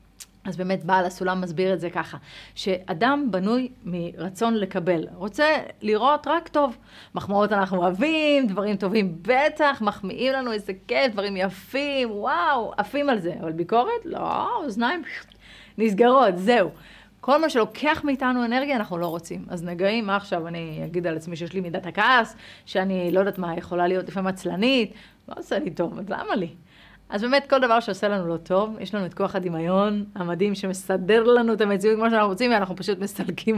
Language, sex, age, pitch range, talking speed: Hebrew, female, 30-49, 185-245 Hz, 175 wpm